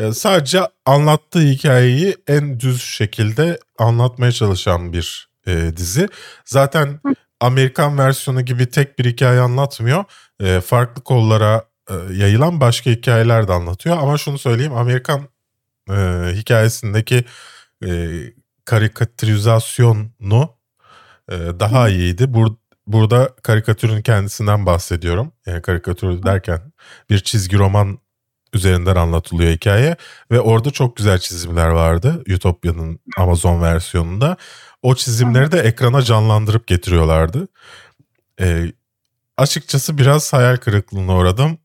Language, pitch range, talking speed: Turkish, 95-130 Hz, 105 wpm